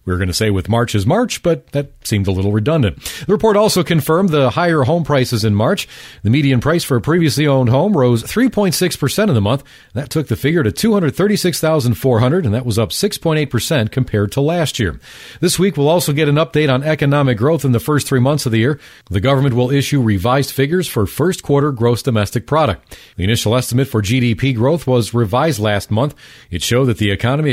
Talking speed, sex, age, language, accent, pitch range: 215 wpm, male, 40-59, English, American, 120-160 Hz